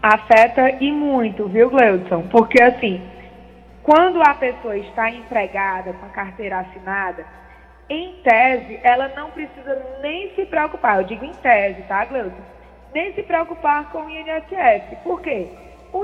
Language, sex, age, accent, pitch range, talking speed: Portuguese, female, 20-39, Brazilian, 215-300 Hz, 145 wpm